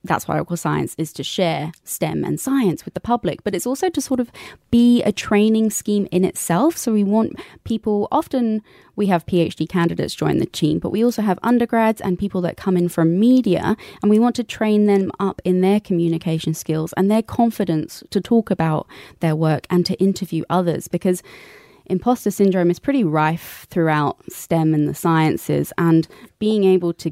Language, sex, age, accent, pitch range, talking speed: English, female, 20-39, British, 160-200 Hz, 195 wpm